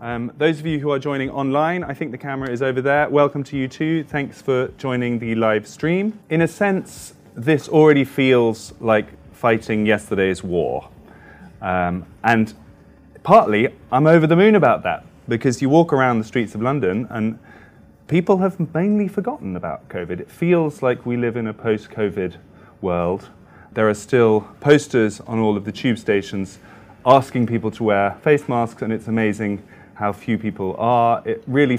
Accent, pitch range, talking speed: British, 100-135 Hz, 175 wpm